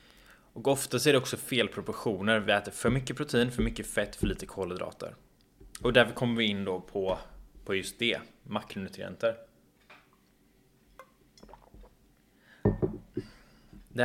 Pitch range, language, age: 95-115 Hz, Swedish, 20-39